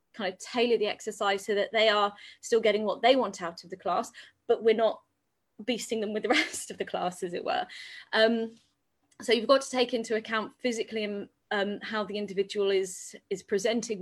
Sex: female